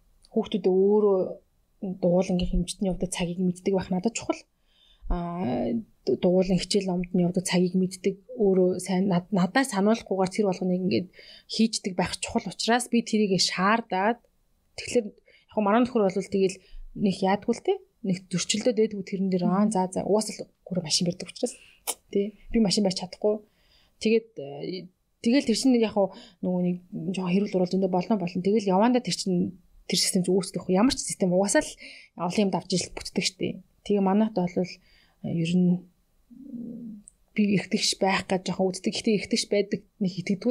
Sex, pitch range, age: female, 185-220 Hz, 20-39